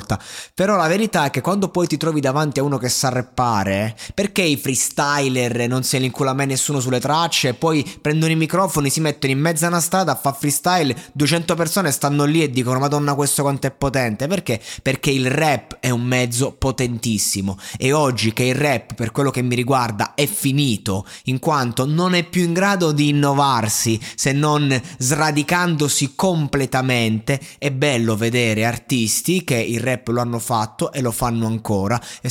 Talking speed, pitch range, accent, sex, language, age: 185 wpm, 115-145 Hz, native, male, Italian, 20-39